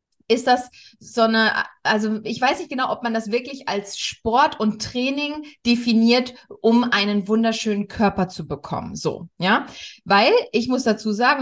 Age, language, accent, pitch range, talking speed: 20-39, German, German, 205-265 Hz, 165 wpm